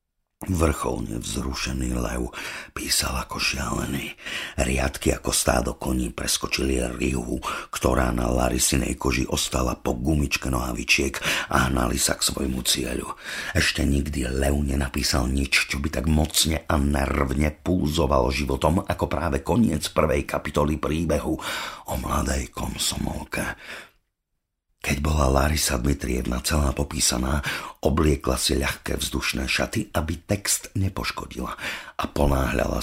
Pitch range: 65-75 Hz